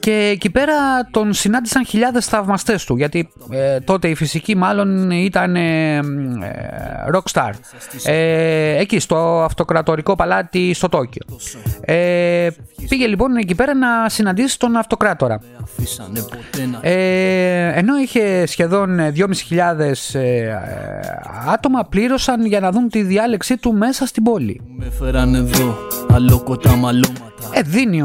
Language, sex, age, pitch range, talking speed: Greek, male, 30-49, 135-220 Hz, 95 wpm